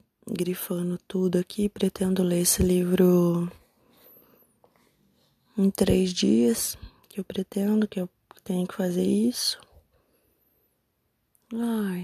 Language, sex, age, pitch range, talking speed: Portuguese, female, 20-39, 180-205 Hz, 100 wpm